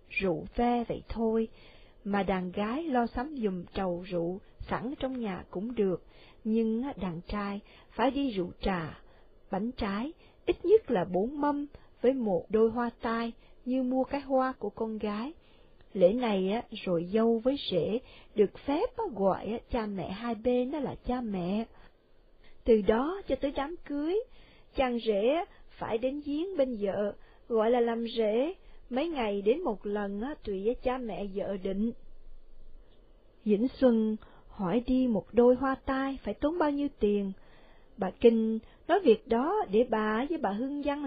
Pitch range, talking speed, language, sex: 205-265 Hz, 165 wpm, Vietnamese, female